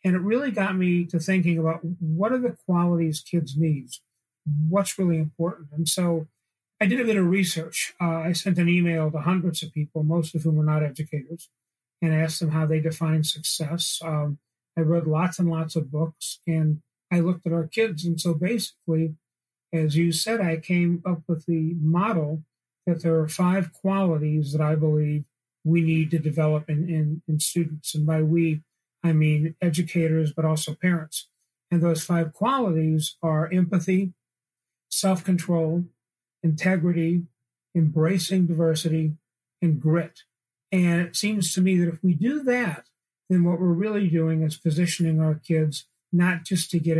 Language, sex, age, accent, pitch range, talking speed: English, male, 40-59, American, 155-175 Hz, 170 wpm